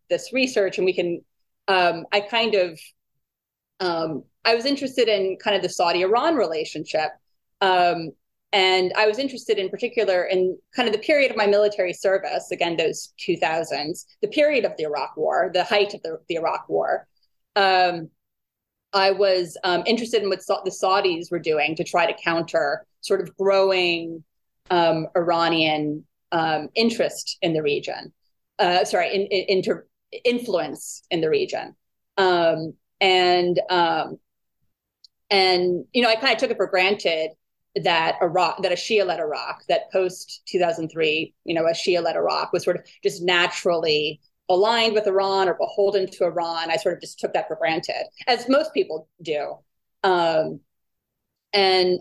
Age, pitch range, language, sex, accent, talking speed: 30-49, 170-210 Hz, English, female, American, 165 wpm